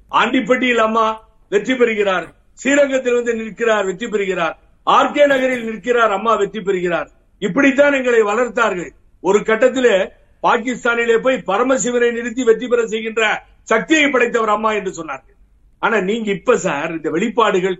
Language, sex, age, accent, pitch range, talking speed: Tamil, male, 50-69, native, 180-245 Hz, 125 wpm